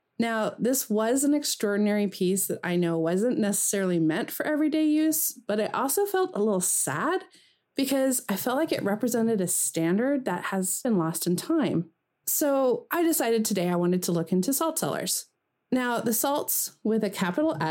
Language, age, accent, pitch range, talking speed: English, 30-49, American, 175-245 Hz, 180 wpm